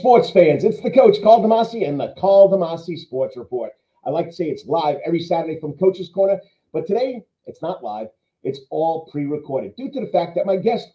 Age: 40-59